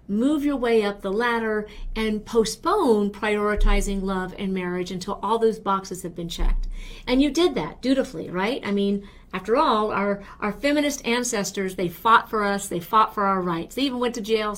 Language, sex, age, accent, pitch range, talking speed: English, female, 50-69, American, 185-230 Hz, 195 wpm